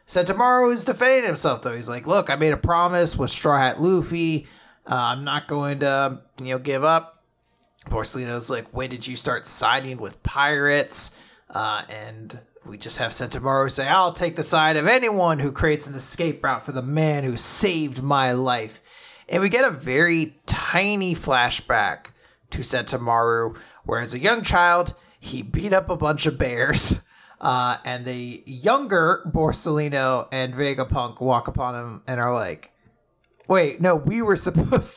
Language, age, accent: English, 30-49, American